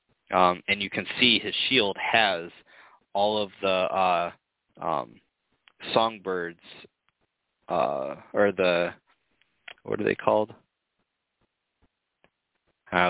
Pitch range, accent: 90-105 Hz, American